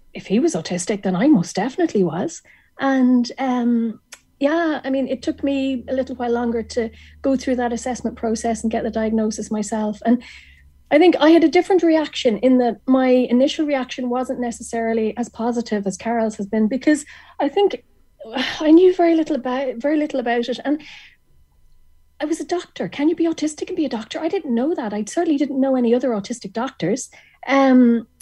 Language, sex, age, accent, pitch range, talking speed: English, female, 30-49, Irish, 225-280 Hz, 195 wpm